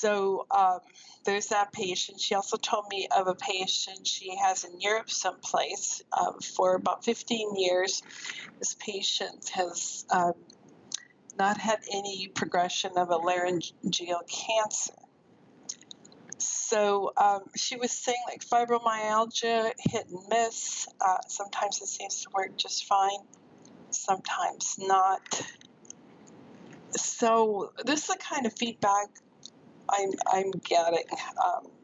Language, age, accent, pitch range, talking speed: English, 50-69, American, 185-230 Hz, 120 wpm